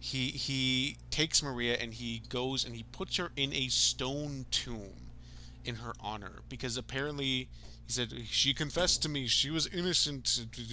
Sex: male